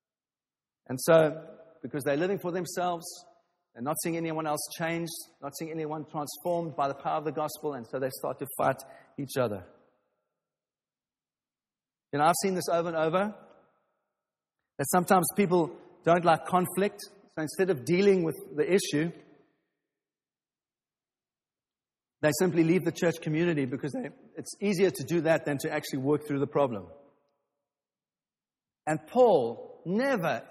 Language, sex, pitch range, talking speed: English, male, 150-200 Hz, 150 wpm